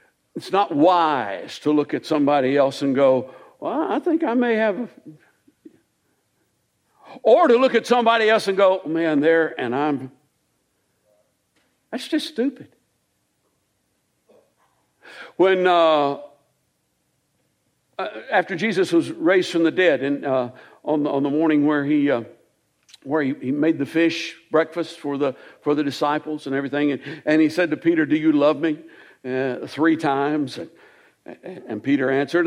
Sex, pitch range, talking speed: male, 145-215 Hz, 150 wpm